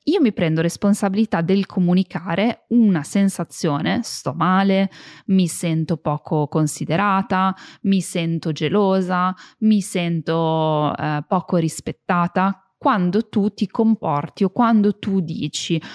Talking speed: 115 wpm